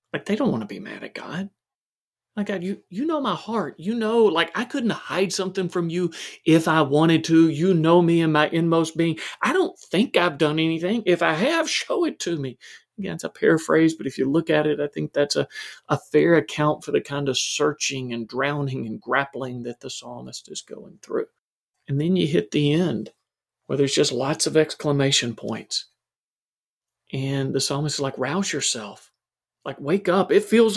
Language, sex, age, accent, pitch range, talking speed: English, male, 40-59, American, 140-185 Hz, 205 wpm